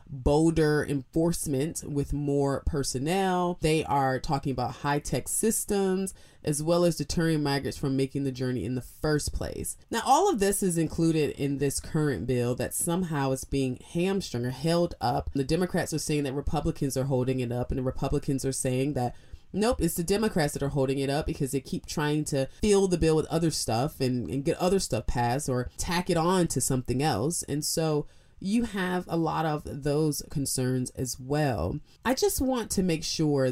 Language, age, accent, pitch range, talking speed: English, 20-39, American, 130-170 Hz, 195 wpm